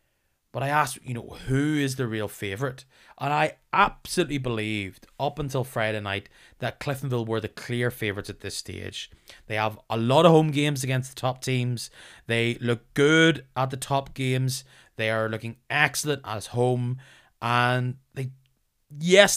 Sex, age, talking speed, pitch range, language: male, 20-39, 165 wpm, 110-140 Hz, English